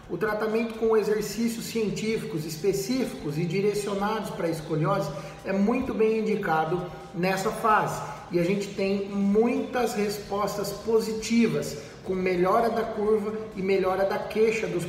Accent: Brazilian